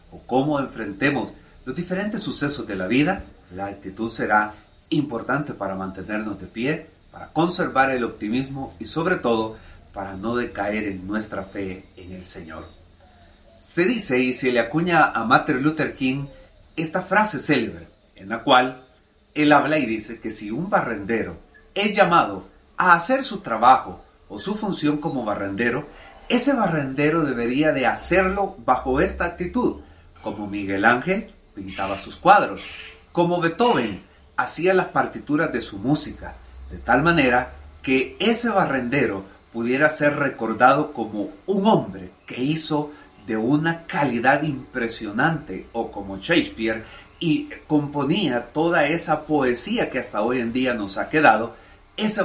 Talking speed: 145 wpm